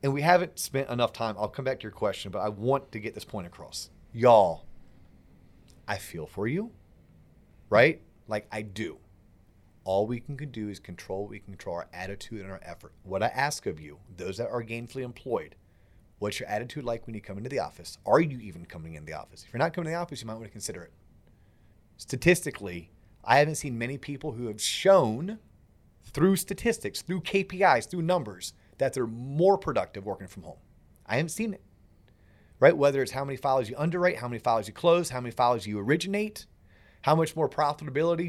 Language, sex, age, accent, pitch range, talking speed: English, male, 30-49, American, 100-155 Hz, 205 wpm